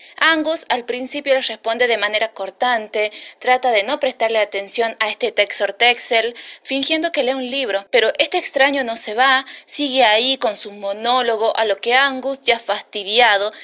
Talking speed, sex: 170 wpm, female